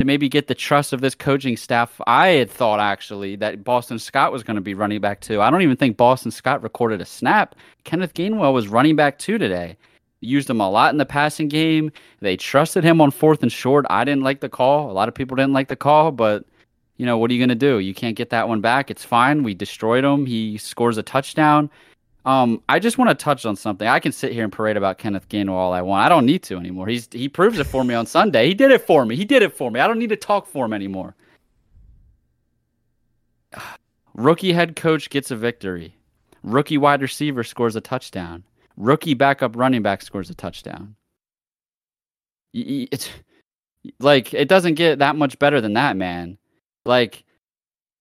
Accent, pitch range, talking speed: American, 110-145 Hz, 215 wpm